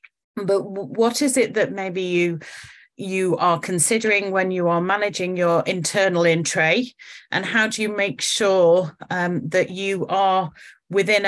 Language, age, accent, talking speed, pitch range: English, 30-49, British, 150 wpm, 175-200 Hz